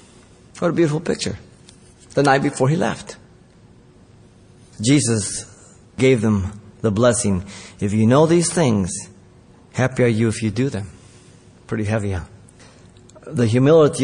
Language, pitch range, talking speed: English, 110-145 Hz, 130 wpm